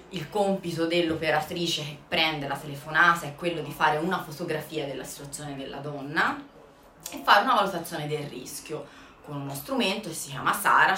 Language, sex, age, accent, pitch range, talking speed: Italian, female, 30-49, native, 145-180 Hz, 165 wpm